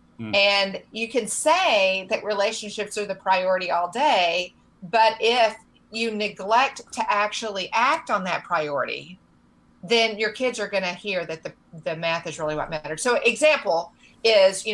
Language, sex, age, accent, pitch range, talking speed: English, female, 40-59, American, 180-230 Hz, 165 wpm